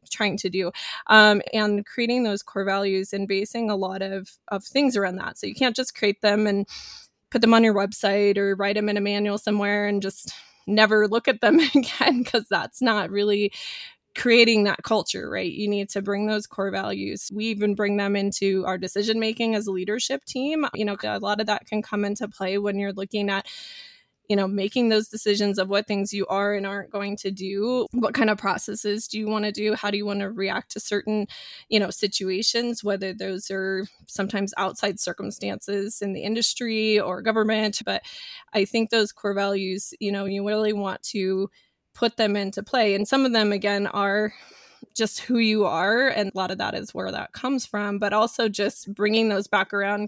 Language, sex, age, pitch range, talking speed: English, female, 20-39, 200-220 Hz, 205 wpm